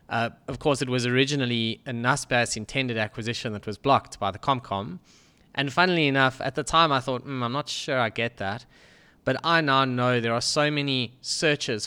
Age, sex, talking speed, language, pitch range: 20-39, male, 200 wpm, English, 110-135 Hz